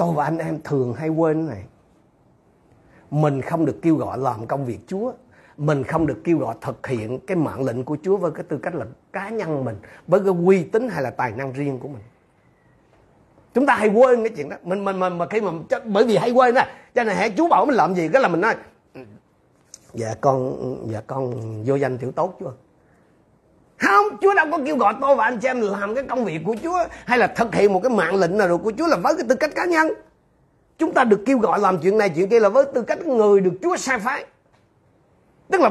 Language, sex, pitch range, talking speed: Vietnamese, male, 160-270 Hz, 240 wpm